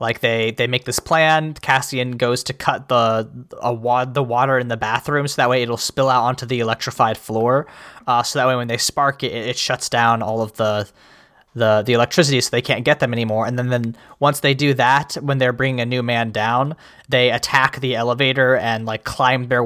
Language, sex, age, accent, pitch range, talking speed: English, male, 20-39, American, 115-140 Hz, 225 wpm